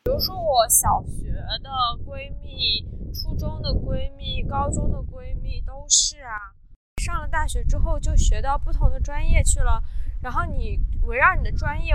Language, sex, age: Chinese, female, 10-29